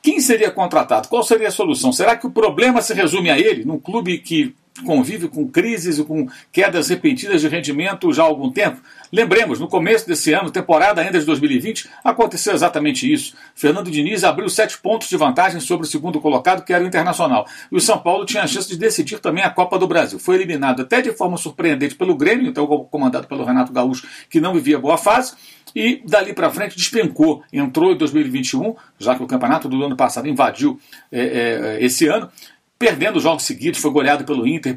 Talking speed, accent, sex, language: 200 wpm, Brazilian, male, Portuguese